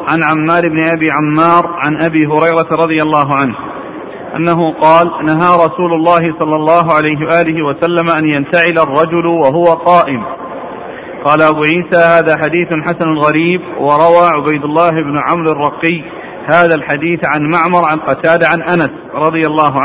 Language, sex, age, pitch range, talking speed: Arabic, male, 40-59, 155-175 Hz, 150 wpm